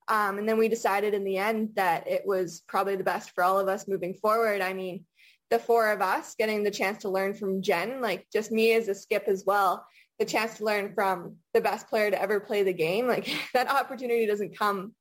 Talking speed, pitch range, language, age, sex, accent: 235 wpm, 190-220 Hz, English, 20-39, female, American